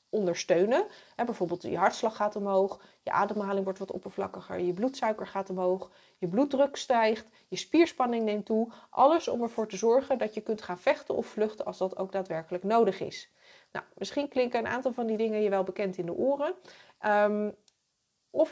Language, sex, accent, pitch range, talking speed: Dutch, female, Dutch, 195-250 Hz, 175 wpm